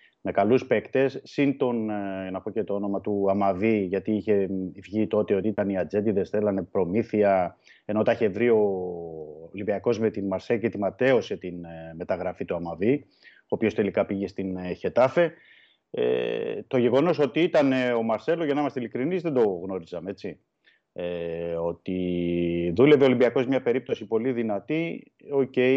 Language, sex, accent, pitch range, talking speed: Greek, male, native, 95-135 Hz, 160 wpm